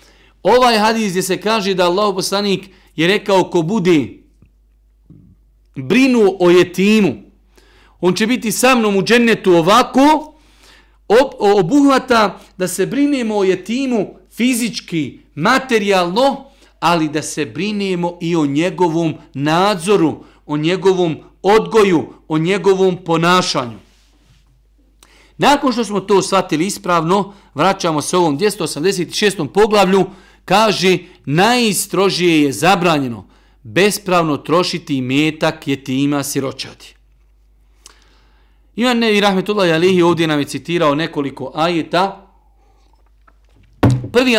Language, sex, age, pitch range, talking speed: English, male, 50-69, 155-210 Hz, 105 wpm